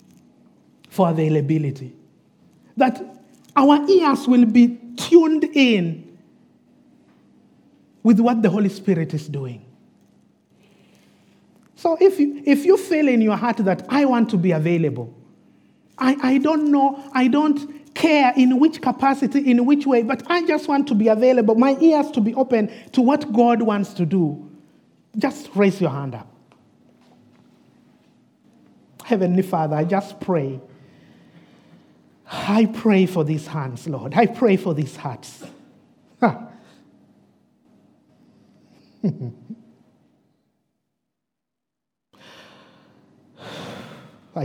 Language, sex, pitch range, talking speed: English, male, 170-255 Hz, 110 wpm